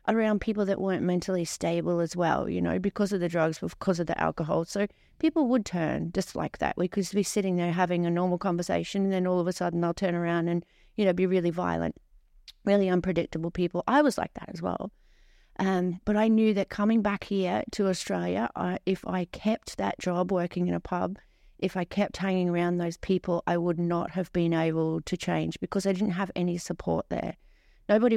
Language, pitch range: English, 170-195 Hz